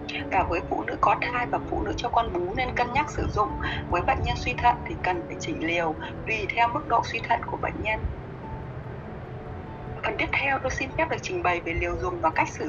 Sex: female